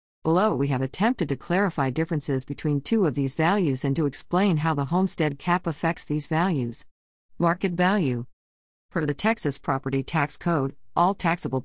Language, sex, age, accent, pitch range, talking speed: English, female, 50-69, American, 140-190 Hz, 165 wpm